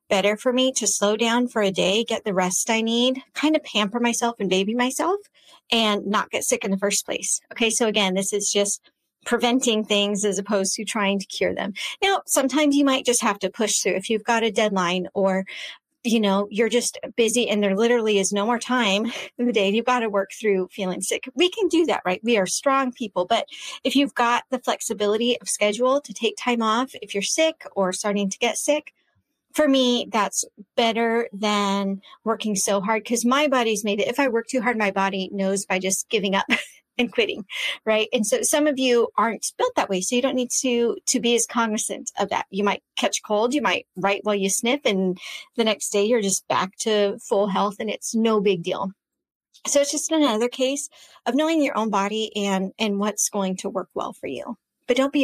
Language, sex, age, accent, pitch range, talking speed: English, female, 30-49, American, 200-250 Hz, 225 wpm